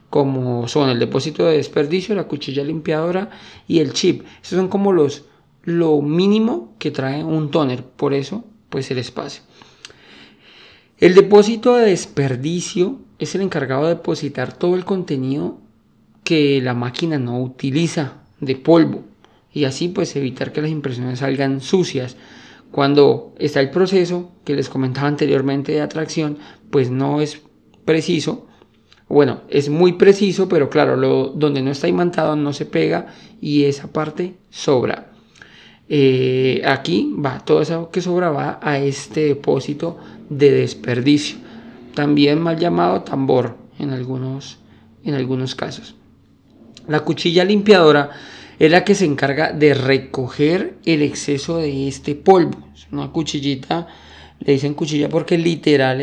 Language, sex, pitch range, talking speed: Spanish, male, 135-170 Hz, 140 wpm